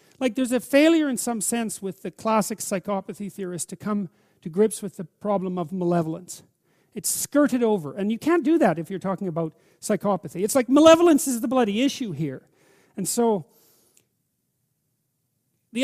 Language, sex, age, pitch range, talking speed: English, male, 40-59, 175-220 Hz, 170 wpm